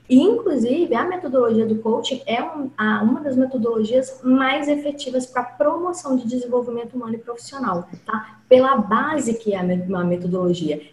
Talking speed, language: 150 wpm, Portuguese